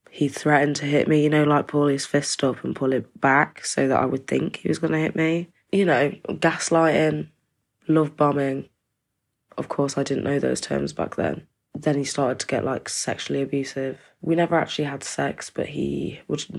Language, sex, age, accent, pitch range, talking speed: English, female, 20-39, British, 135-155 Hz, 205 wpm